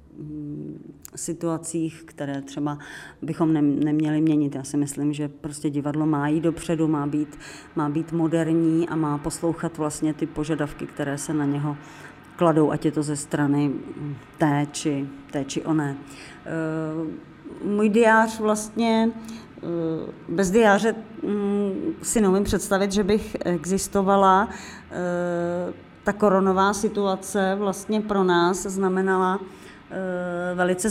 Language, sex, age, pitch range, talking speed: Czech, female, 30-49, 160-195 Hz, 110 wpm